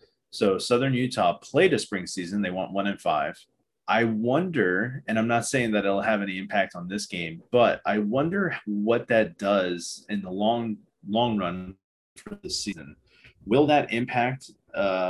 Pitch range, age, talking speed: 95-120 Hz, 30-49, 170 wpm